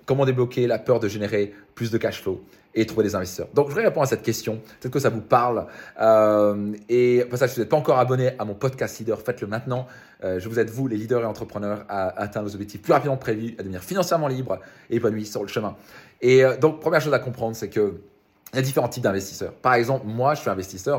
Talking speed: 255 wpm